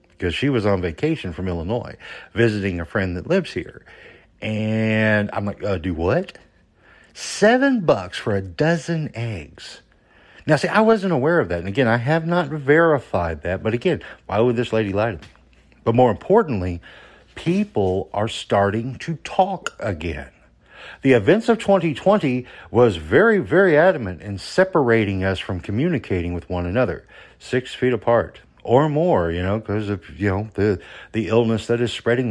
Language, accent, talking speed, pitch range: English, American, 165 wpm, 95-130 Hz